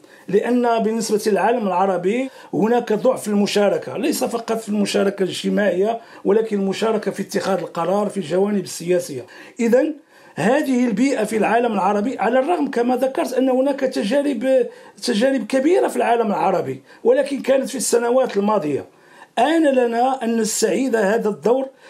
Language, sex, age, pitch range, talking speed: Arabic, male, 50-69, 205-260 Hz, 135 wpm